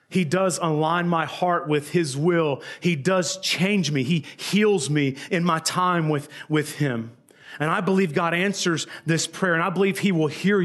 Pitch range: 140-170 Hz